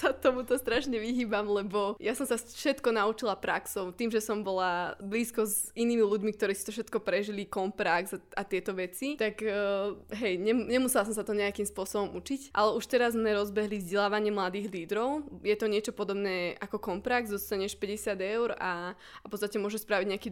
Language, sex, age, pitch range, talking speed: Slovak, female, 20-39, 195-225 Hz, 185 wpm